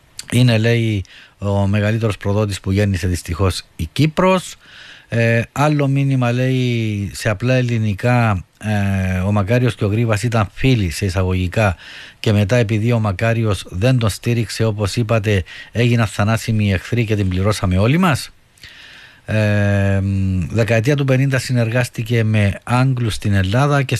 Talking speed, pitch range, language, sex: 140 wpm, 100-125 Hz, Greek, male